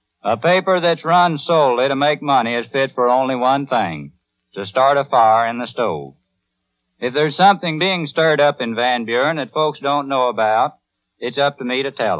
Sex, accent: male, American